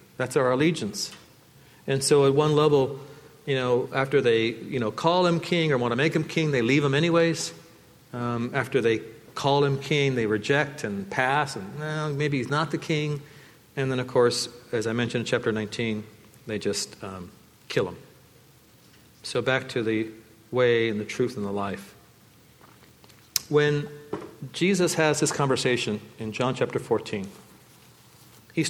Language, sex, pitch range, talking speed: English, male, 115-145 Hz, 165 wpm